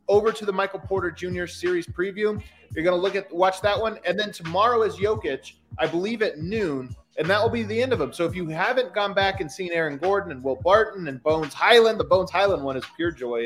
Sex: male